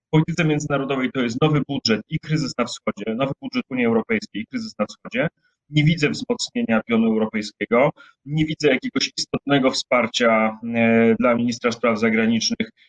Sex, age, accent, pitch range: male, 30-49, native, 135-180 Hz